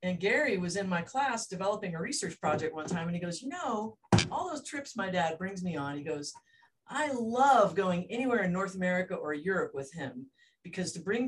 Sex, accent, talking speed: female, American, 220 wpm